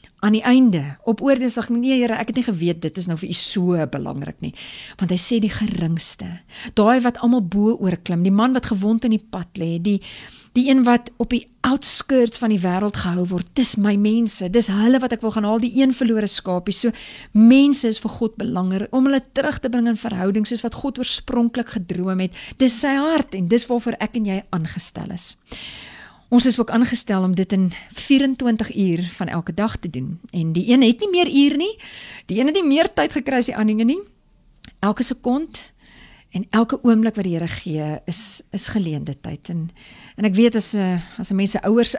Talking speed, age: 210 wpm, 40-59